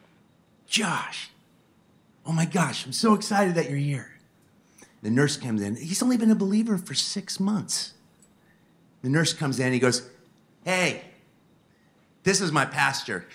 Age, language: 40-59, English